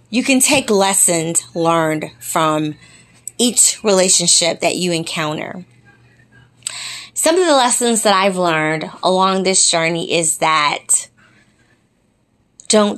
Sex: female